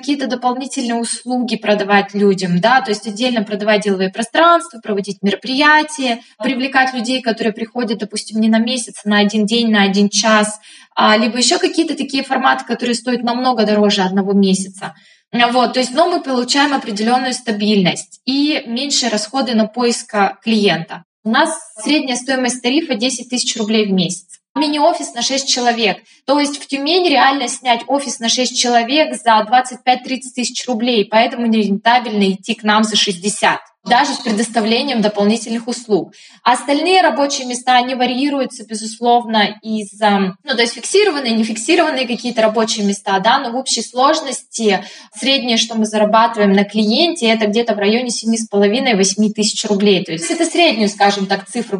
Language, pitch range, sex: Russian, 215-260 Hz, female